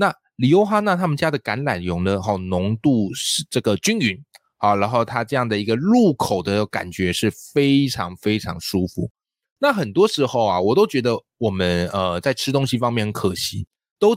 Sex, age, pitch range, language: male, 20-39, 100-135 Hz, Chinese